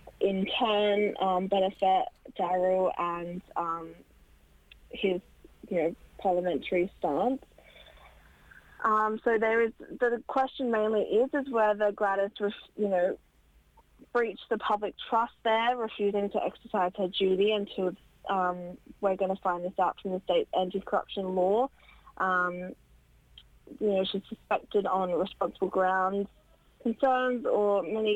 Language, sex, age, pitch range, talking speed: English, female, 20-39, 180-220 Hz, 125 wpm